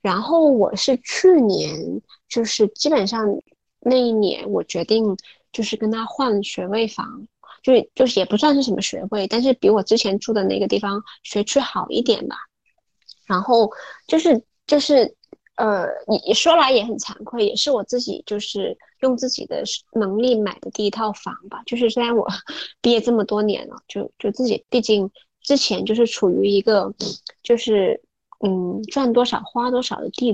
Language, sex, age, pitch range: Chinese, female, 20-39, 205-270 Hz